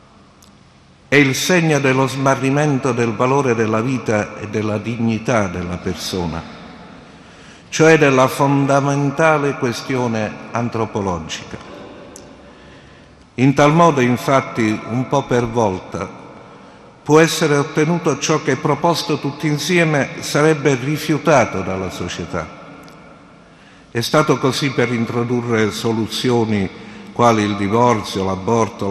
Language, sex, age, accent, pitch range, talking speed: Italian, male, 50-69, native, 105-140 Hz, 100 wpm